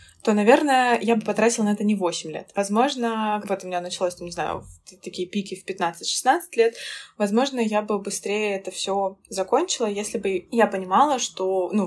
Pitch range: 200-255 Hz